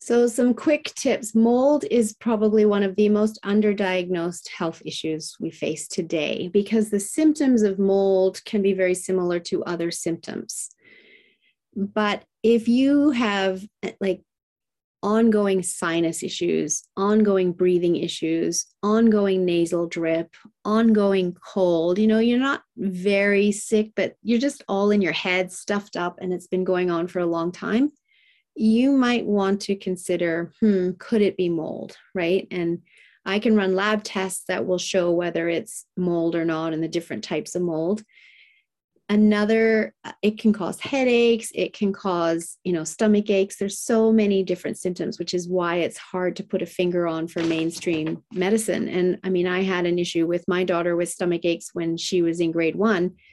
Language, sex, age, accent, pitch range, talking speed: English, female, 30-49, American, 175-215 Hz, 170 wpm